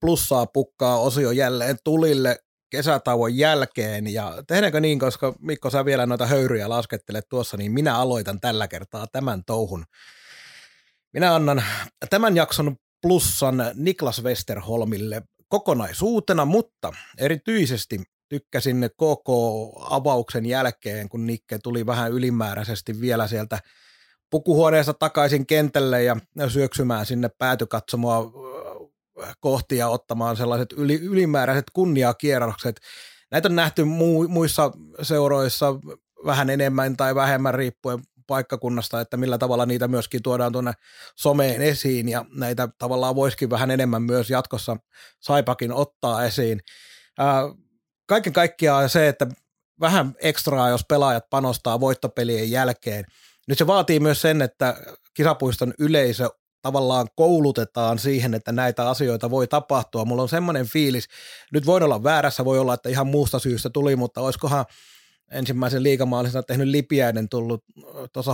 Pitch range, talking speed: 120-145 Hz, 125 wpm